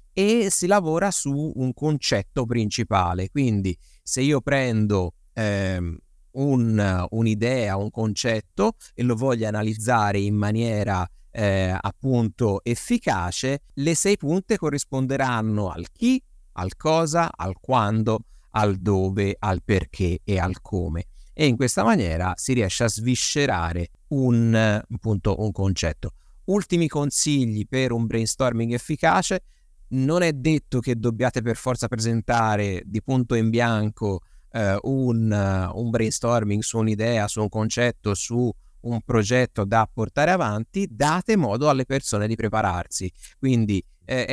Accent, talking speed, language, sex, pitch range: native, 130 wpm, Italian, male, 100-130 Hz